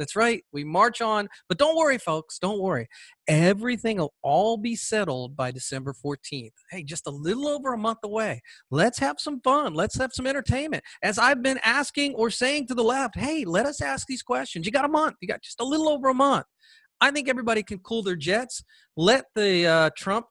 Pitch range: 175-255 Hz